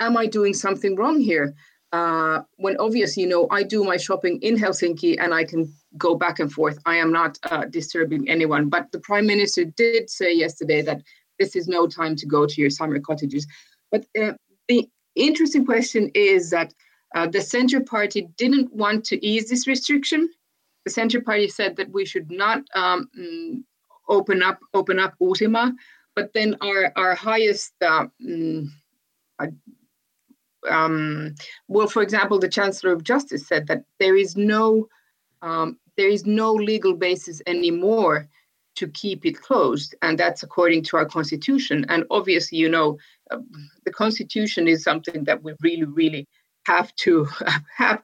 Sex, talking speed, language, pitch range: female, 165 wpm, Finnish, 160-220 Hz